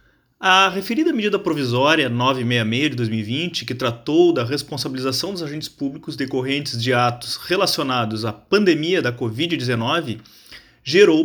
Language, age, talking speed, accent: Portuguese, 30-49, 125 wpm, Brazilian